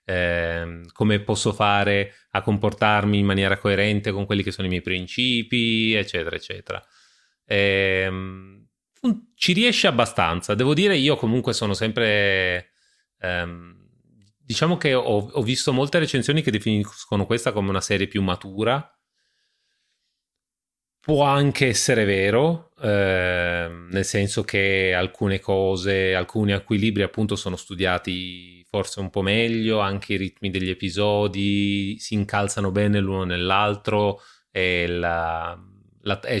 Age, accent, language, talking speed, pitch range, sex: 30-49, native, Italian, 120 wpm, 95-110 Hz, male